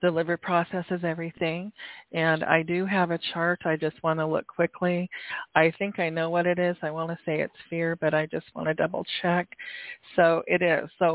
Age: 40-59